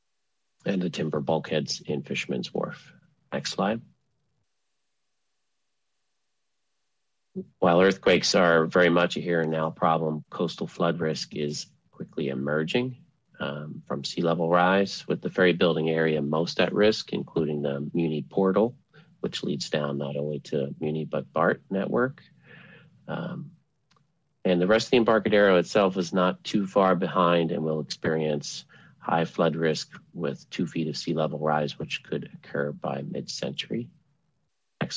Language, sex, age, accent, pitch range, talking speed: English, male, 40-59, American, 75-110 Hz, 145 wpm